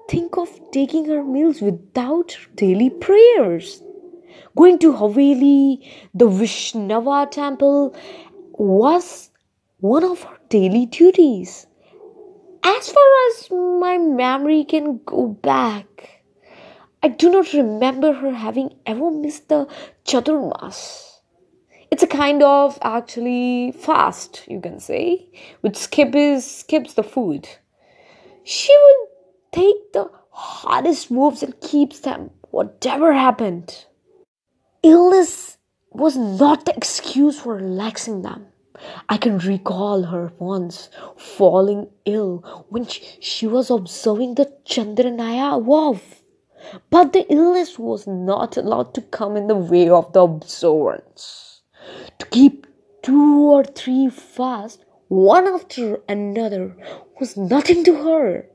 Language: English